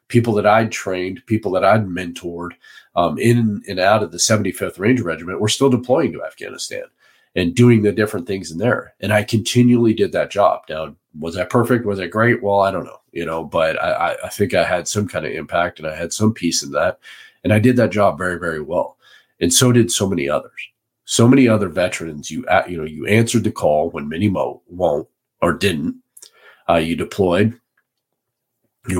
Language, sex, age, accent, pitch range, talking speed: English, male, 40-59, American, 85-115 Hz, 205 wpm